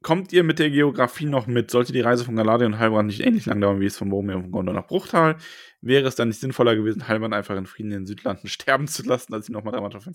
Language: German